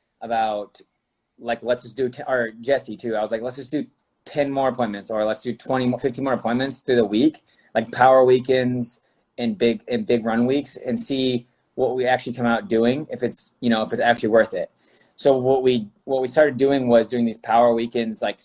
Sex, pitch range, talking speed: male, 110-125 Hz, 220 wpm